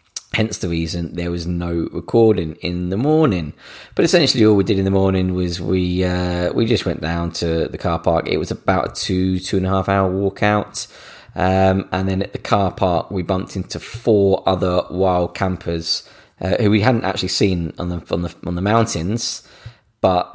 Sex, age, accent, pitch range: male, 20-39, British, 90-110 Hz